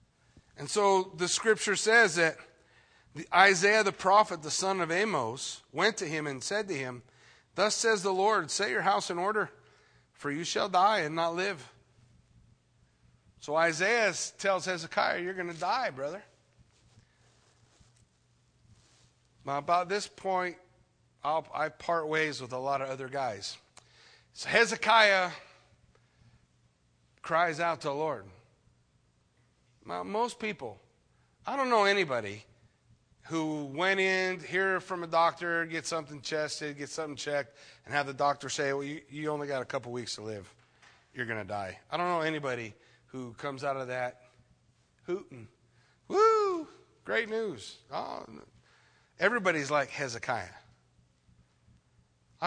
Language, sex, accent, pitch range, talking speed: English, male, American, 125-190 Hz, 135 wpm